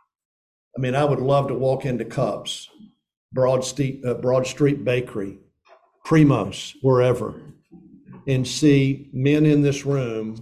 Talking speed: 125 wpm